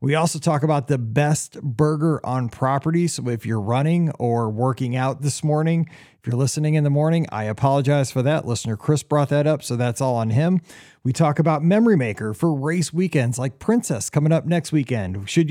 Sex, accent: male, American